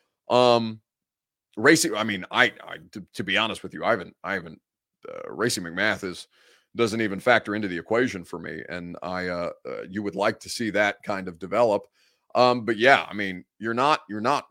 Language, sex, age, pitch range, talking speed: English, male, 30-49, 95-125 Hz, 205 wpm